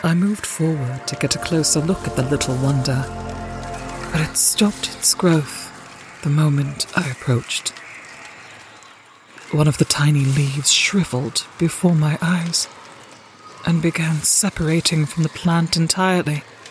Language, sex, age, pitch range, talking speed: English, female, 40-59, 130-175 Hz, 135 wpm